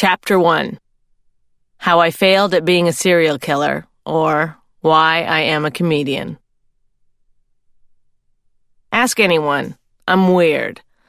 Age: 30-49